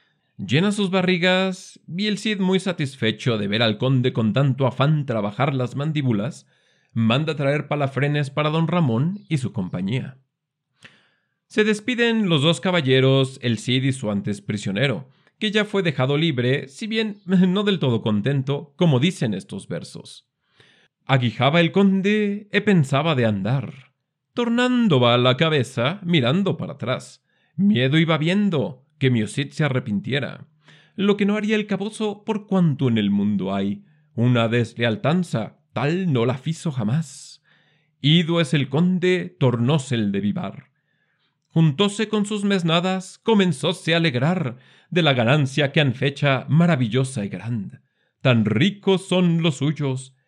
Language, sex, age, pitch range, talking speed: Spanish, male, 40-59, 130-180 Hz, 145 wpm